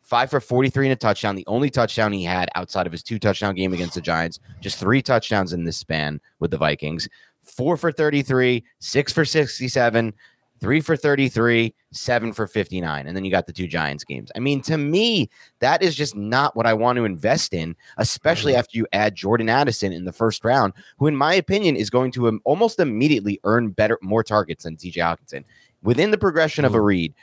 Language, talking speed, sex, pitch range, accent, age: English, 205 wpm, male, 100-135 Hz, American, 30-49